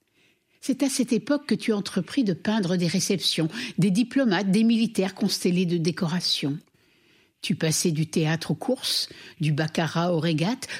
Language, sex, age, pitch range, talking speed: French, female, 60-79, 155-200 Hz, 155 wpm